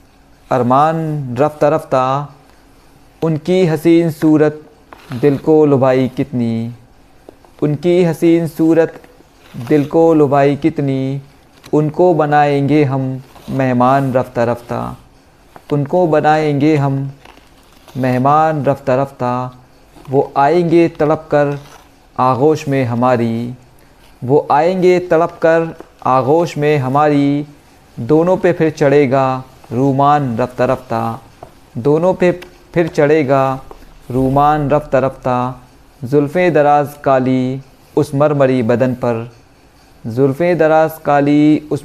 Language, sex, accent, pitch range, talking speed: Hindi, male, native, 130-155 Hz, 90 wpm